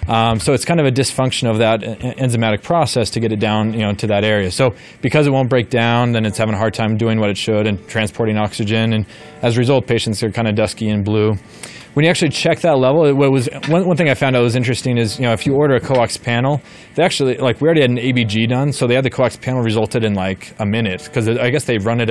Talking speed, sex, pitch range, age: 275 wpm, male, 110-130 Hz, 20-39